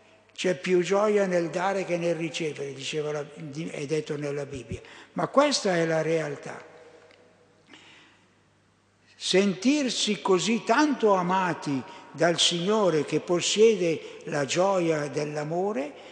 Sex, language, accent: male, Italian, native